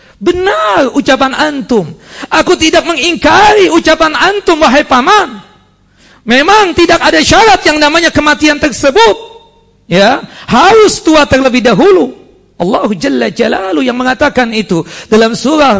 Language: Indonesian